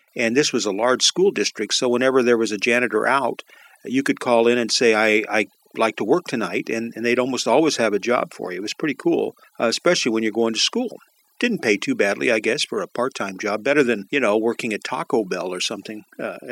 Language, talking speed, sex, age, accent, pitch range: English, 245 wpm, male, 50-69, American, 115-160 Hz